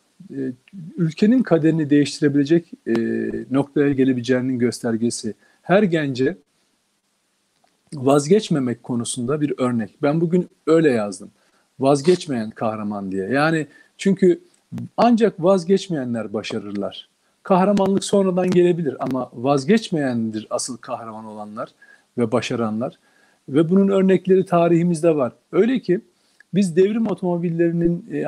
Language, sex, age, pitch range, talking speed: Turkish, male, 40-59, 125-180 Hz, 100 wpm